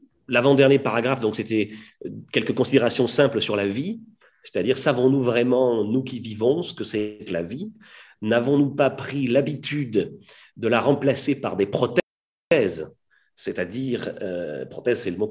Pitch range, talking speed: 100-140 Hz, 145 wpm